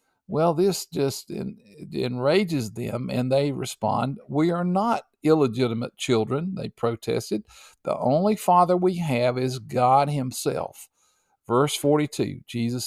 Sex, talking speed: male, 120 wpm